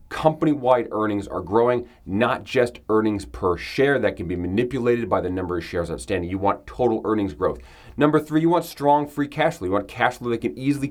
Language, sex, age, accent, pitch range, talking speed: English, male, 30-49, American, 100-125 Hz, 215 wpm